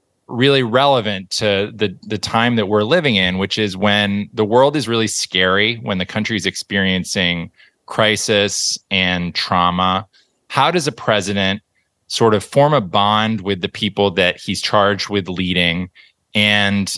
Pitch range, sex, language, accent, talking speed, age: 95-110 Hz, male, English, American, 150 wpm, 20-39